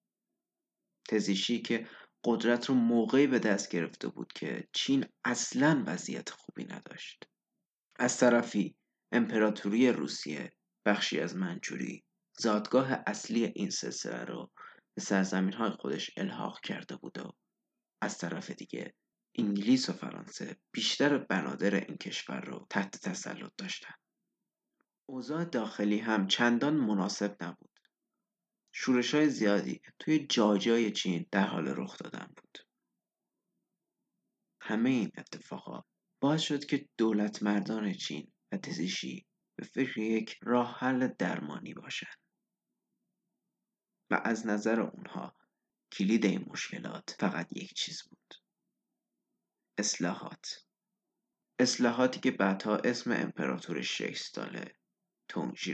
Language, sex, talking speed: Persian, male, 110 wpm